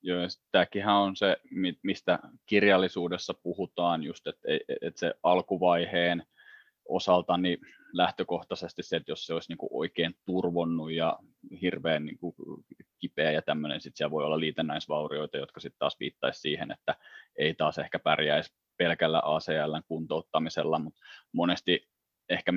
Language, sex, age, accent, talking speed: Finnish, male, 20-39, native, 130 wpm